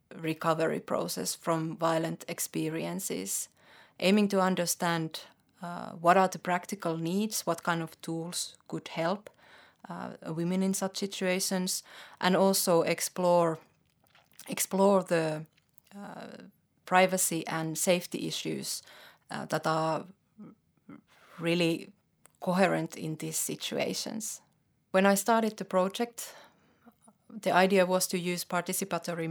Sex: female